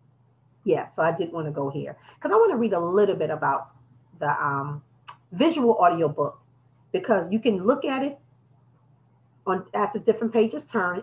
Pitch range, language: 165-235 Hz, English